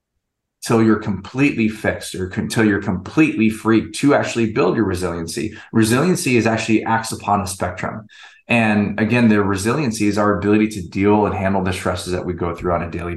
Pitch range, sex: 95-110 Hz, male